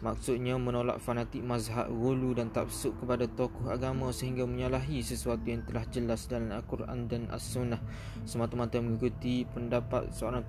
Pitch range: 110-125 Hz